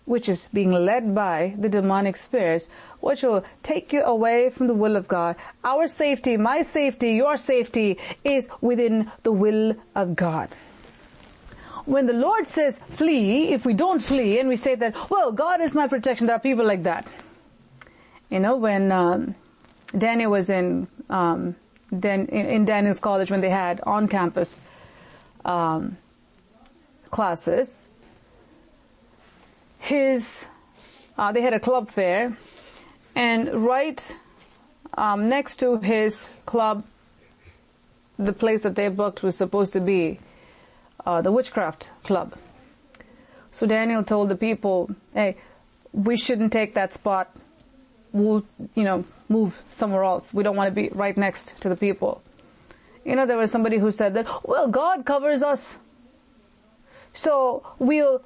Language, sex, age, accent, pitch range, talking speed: English, female, 40-59, Indian, 200-260 Hz, 140 wpm